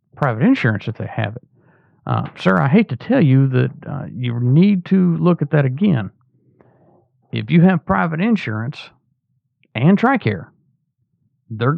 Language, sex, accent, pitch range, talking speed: English, male, American, 115-150 Hz, 155 wpm